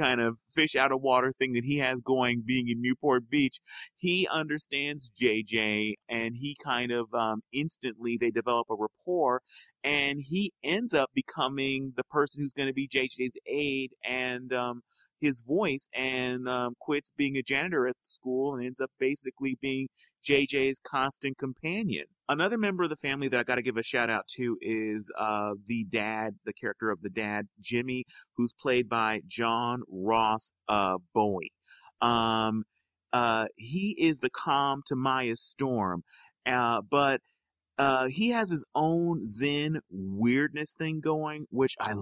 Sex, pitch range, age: male, 120-145 Hz, 30-49